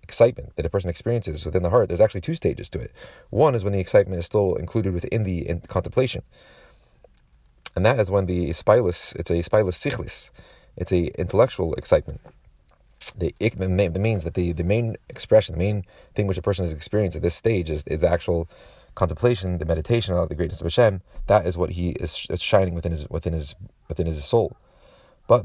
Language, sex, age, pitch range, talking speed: English, male, 30-49, 85-105 Hz, 205 wpm